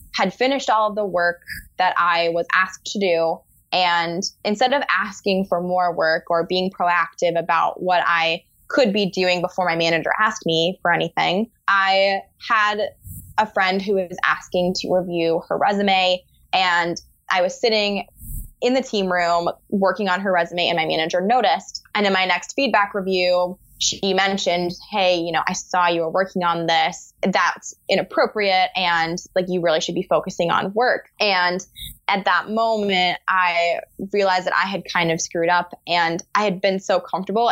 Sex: female